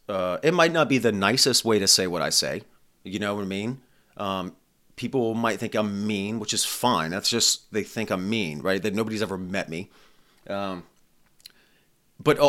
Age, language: 30-49, English